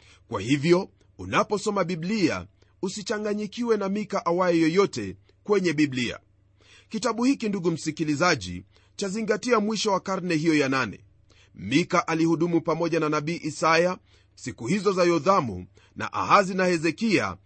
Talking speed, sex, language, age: 125 wpm, male, Swahili, 40-59